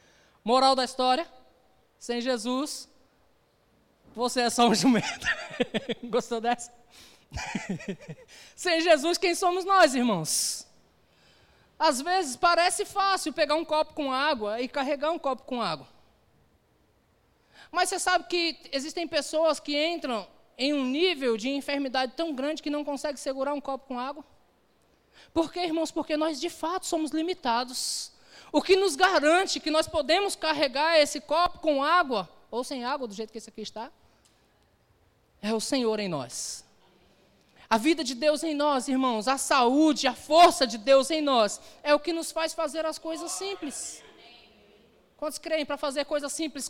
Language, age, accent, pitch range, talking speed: Portuguese, 20-39, Brazilian, 250-330 Hz, 155 wpm